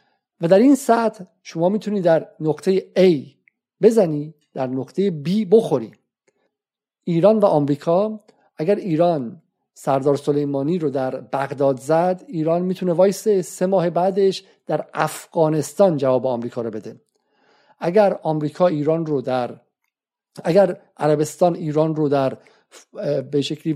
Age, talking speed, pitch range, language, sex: 50-69, 125 wpm, 145-195 Hz, Persian, male